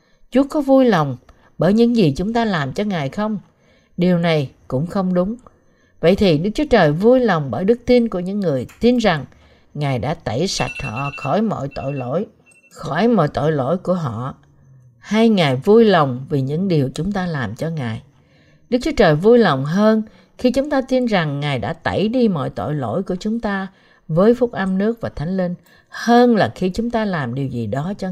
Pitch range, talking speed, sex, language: 145-230 Hz, 210 wpm, female, Vietnamese